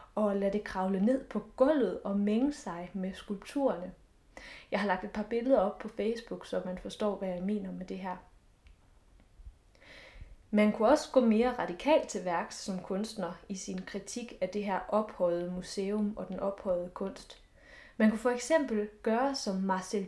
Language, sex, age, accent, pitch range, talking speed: English, female, 20-39, Danish, 195-255 Hz, 175 wpm